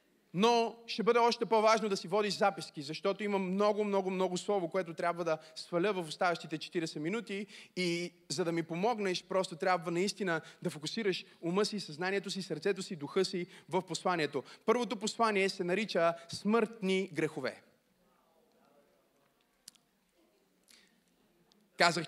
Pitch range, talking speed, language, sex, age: 180-230 Hz, 135 wpm, Bulgarian, male, 30-49